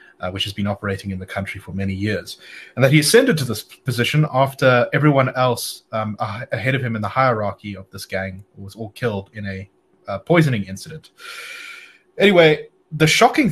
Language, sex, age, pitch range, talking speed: English, male, 30-49, 105-150 Hz, 185 wpm